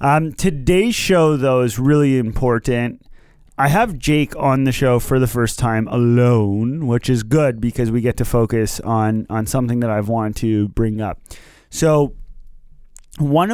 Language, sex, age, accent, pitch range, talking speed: English, male, 30-49, American, 110-135 Hz, 165 wpm